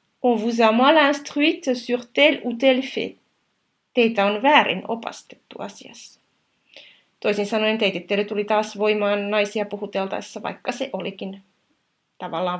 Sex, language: female, Finnish